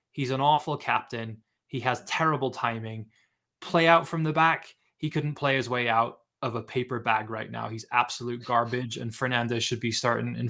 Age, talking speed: 20-39, 195 wpm